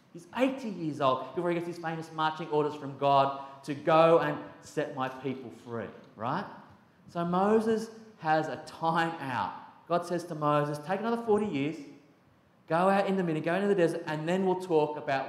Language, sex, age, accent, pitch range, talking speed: English, male, 30-49, Australian, 120-165 Hz, 190 wpm